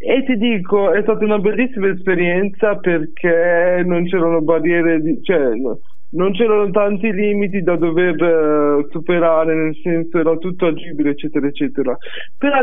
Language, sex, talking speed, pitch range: Italian, male, 145 wpm, 165-210 Hz